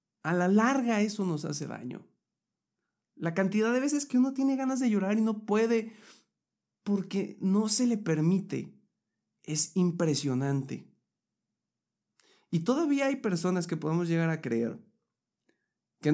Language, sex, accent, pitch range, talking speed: Spanish, male, Mexican, 130-195 Hz, 140 wpm